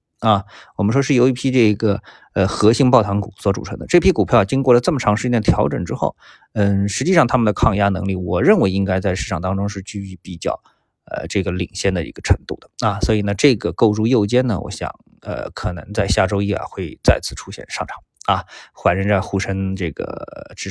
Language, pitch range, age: Chinese, 95-115 Hz, 20-39